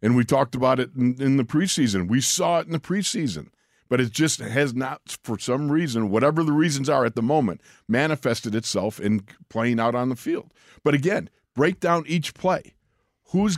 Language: English